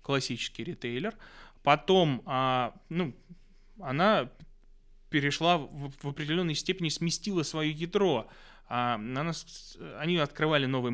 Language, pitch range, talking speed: Russian, 130-180 Hz, 80 wpm